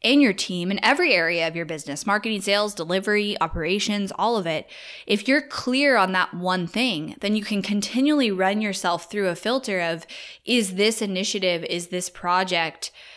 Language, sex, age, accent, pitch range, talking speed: English, female, 10-29, American, 185-225 Hz, 180 wpm